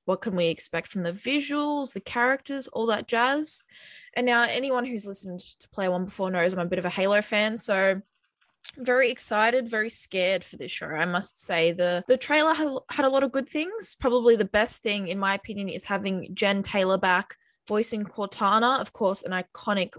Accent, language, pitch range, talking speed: Australian, English, 185-240 Hz, 205 wpm